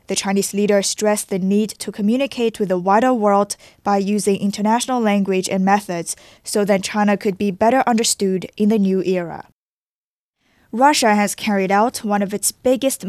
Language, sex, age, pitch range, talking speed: English, female, 10-29, 195-225 Hz, 170 wpm